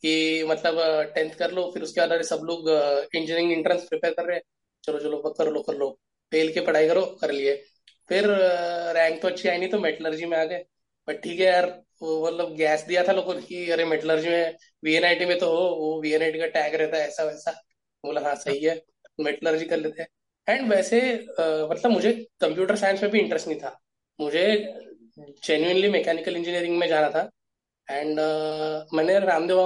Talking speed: 190 wpm